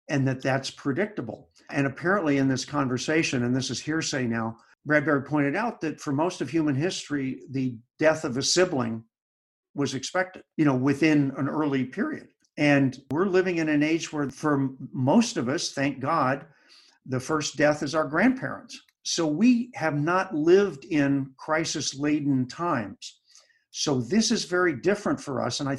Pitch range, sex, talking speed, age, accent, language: 130-160 Hz, male, 170 wpm, 50-69, American, English